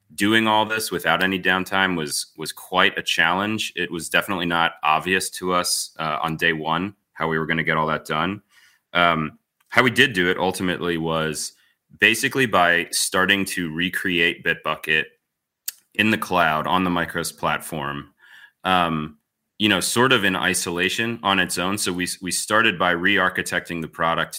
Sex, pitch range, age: male, 80-95 Hz, 30-49